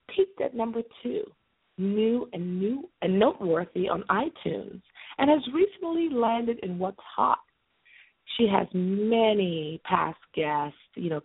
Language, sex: English, female